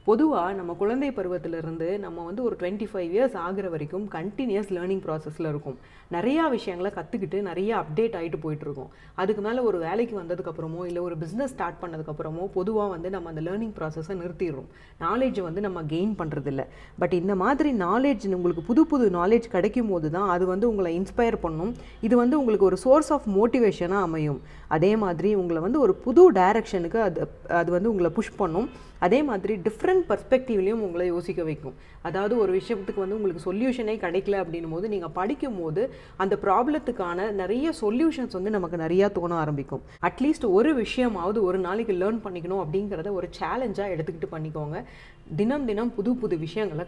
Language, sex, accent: Tamil, female, native